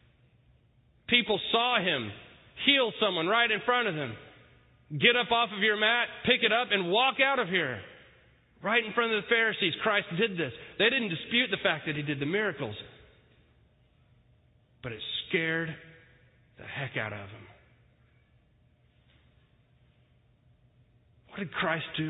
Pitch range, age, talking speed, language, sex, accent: 120-165 Hz, 30-49, 150 wpm, English, male, American